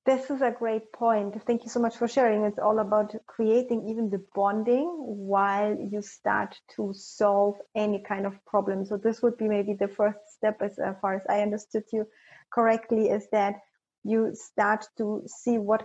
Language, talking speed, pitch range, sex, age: English, 185 wpm, 195-220 Hz, female, 30-49